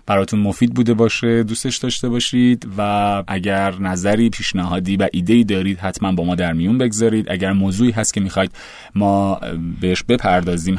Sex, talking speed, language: male, 155 wpm, Persian